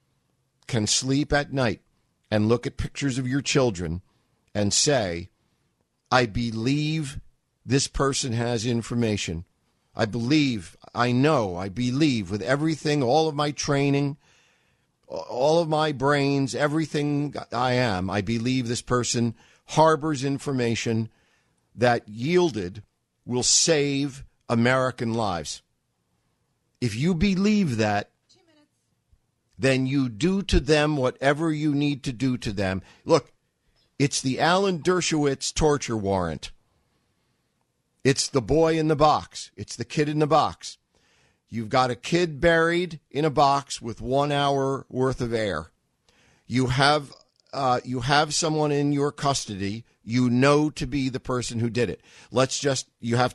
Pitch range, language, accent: 115-150 Hz, English, American